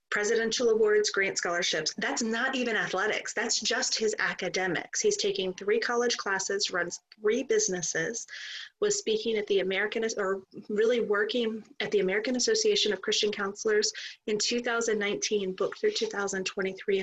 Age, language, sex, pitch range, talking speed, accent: 30-49, English, female, 190-255 Hz, 140 wpm, American